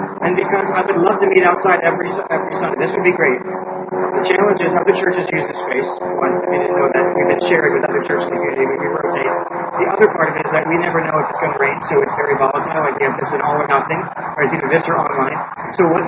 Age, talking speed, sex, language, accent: 30-49, 275 wpm, male, English, American